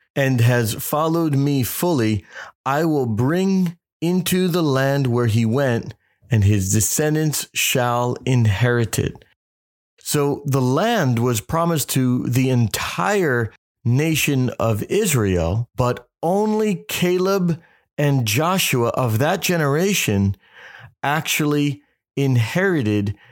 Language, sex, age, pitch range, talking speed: English, male, 40-59, 110-145 Hz, 105 wpm